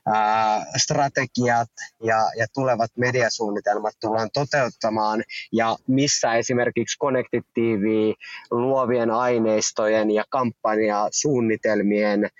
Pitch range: 110-130 Hz